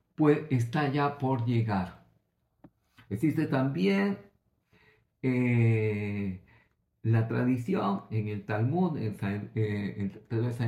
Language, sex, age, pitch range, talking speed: Greek, male, 50-69, 115-150 Hz, 90 wpm